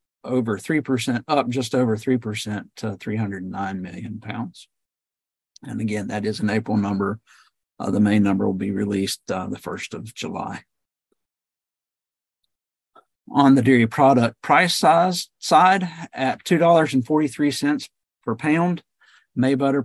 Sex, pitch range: male, 105-130 Hz